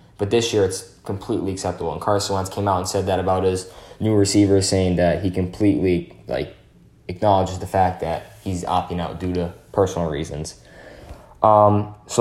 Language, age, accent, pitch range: English, 10-29, American, 95-105 Hz